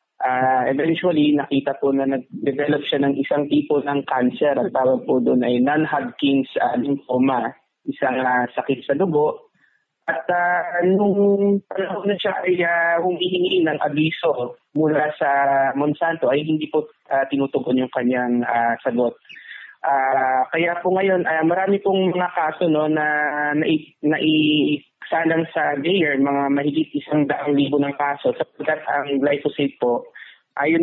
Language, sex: Filipino, male